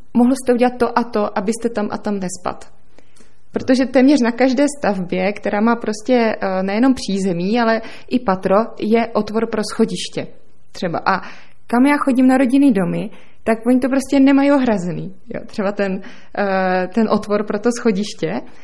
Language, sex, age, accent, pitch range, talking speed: Czech, female, 20-39, native, 195-235 Hz, 160 wpm